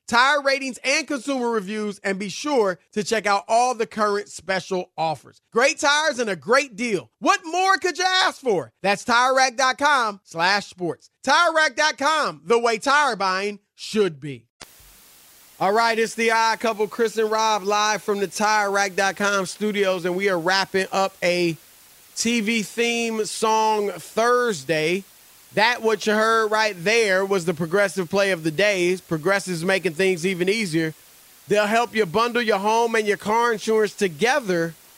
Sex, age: male, 30-49